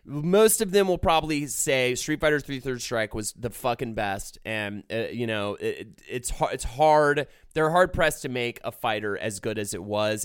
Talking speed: 210 wpm